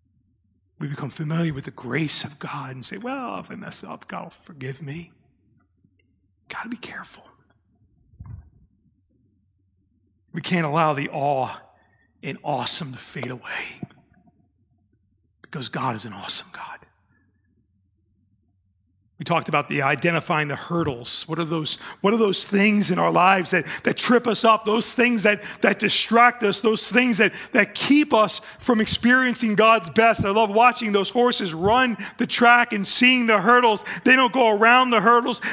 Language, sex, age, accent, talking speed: English, male, 40-59, American, 160 wpm